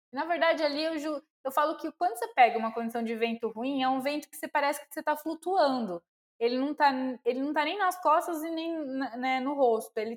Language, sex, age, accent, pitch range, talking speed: Portuguese, female, 10-29, Brazilian, 220-290 Hz, 230 wpm